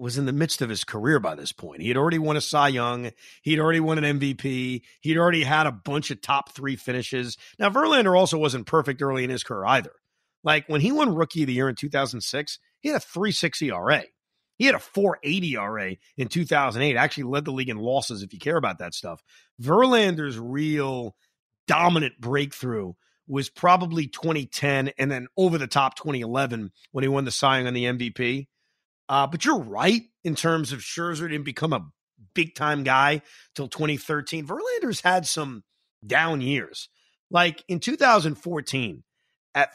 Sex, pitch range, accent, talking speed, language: male, 130-165 Hz, American, 185 wpm, English